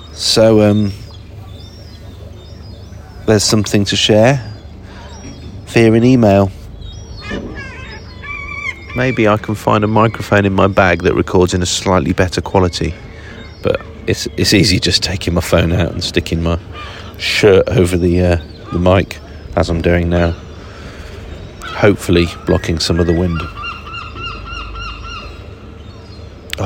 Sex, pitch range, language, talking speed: male, 90-105 Hz, English, 120 wpm